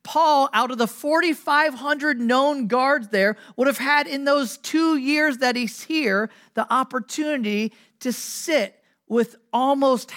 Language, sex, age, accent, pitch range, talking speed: English, male, 40-59, American, 220-290 Hz, 140 wpm